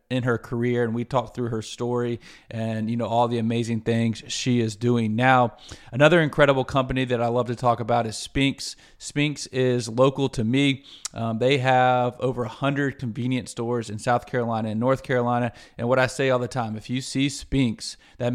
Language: English